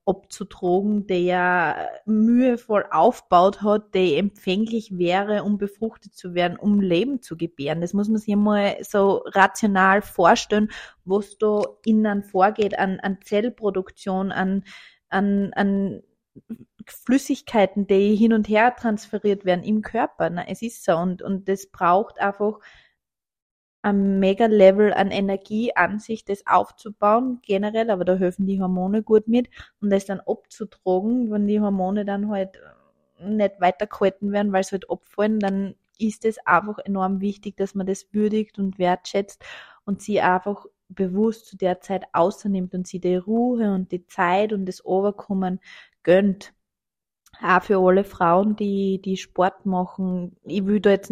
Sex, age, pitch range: female, 20-39, 185-210 Hz